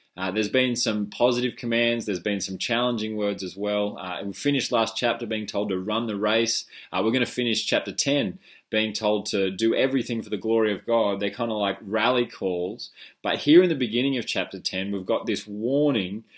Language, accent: English, Australian